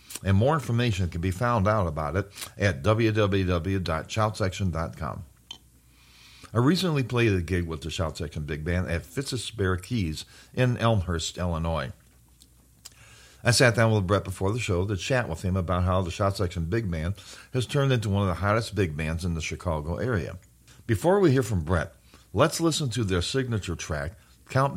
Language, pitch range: English, 85-115 Hz